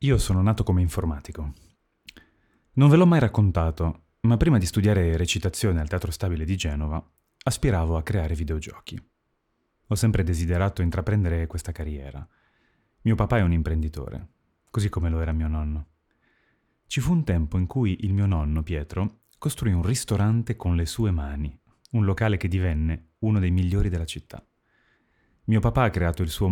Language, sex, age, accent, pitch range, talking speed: Italian, male, 30-49, native, 80-105 Hz, 165 wpm